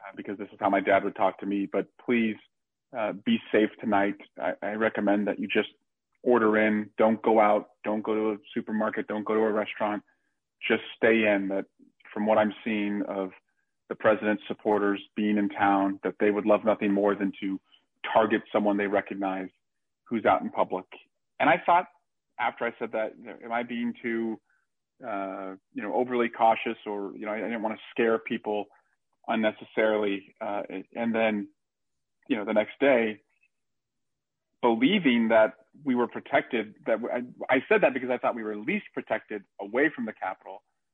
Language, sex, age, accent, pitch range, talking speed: English, male, 40-59, American, 105-120 Hz, 185 wpm